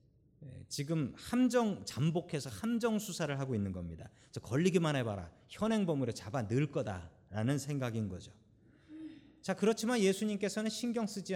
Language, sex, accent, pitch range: Korean, male, native, 115-190 Hz